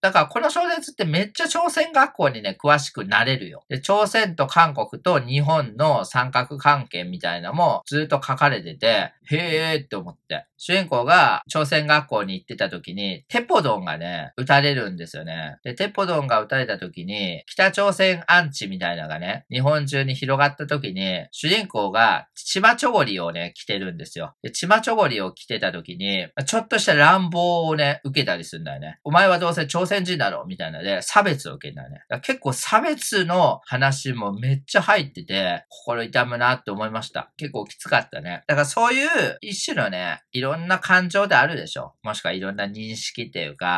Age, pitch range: 40-59, 130-195 Hz